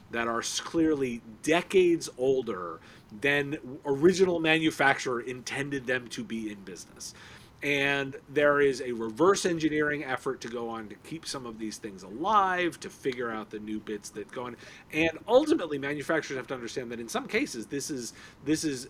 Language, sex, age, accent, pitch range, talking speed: English, male, 40-59, American, 125-190 Hz, 170 wpm